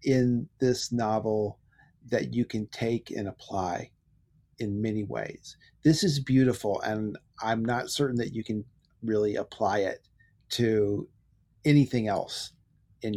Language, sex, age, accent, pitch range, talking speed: English, male, 40-59, American, 105-130 Hz, 130 wpm